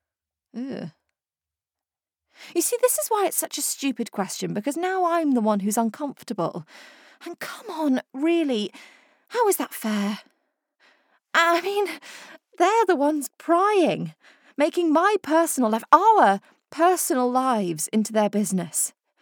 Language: English